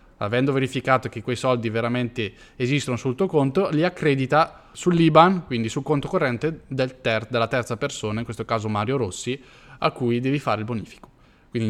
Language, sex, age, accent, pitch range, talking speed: Italian, male, 20-39, native, 120-170 Hz, 175 wpm